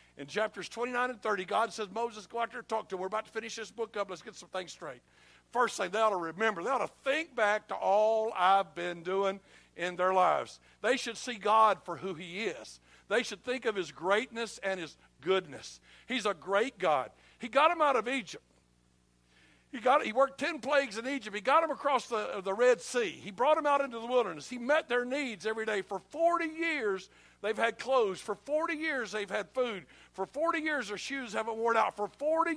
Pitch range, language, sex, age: 185-245 Hz, English, male, 60-79